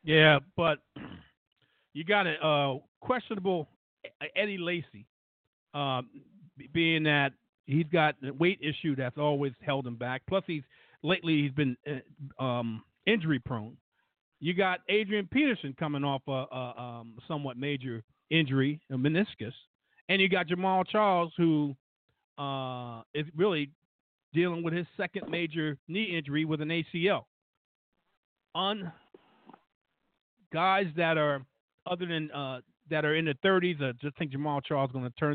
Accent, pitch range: American, 130-175 Hz